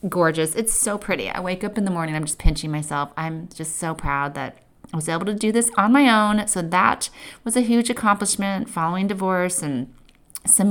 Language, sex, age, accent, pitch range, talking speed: English, female, 30-49, American, 160-210 Hz, 215 wpm